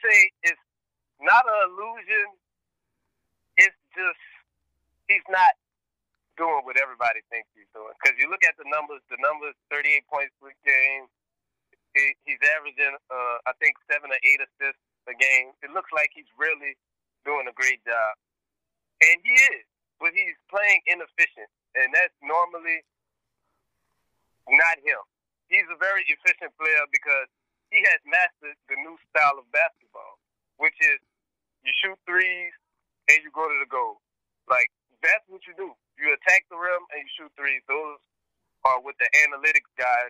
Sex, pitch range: male, 140-195 Hz